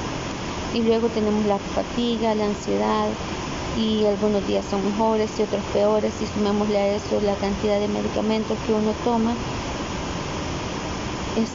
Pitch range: 200-235 Hz